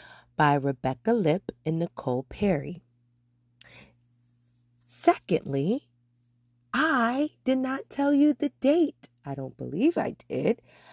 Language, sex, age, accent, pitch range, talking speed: English, female, 30-49, American, 160-265 Hz, 105 wpm